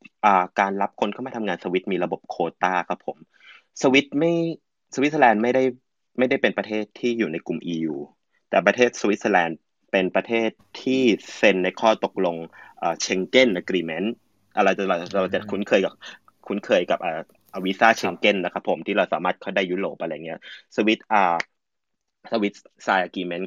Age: 20-39